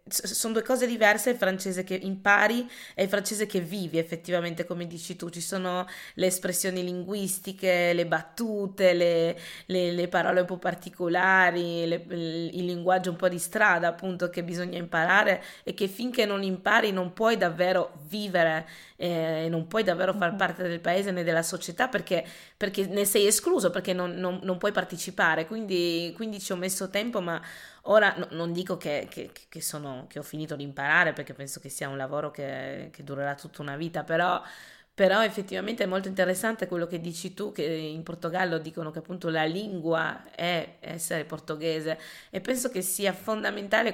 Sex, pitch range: female, 165-190 Hz